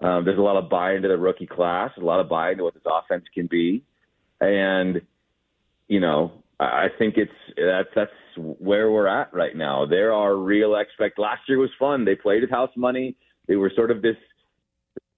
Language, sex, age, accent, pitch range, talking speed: English, male, 30-49, American, 95-115 Hz, 210 wpm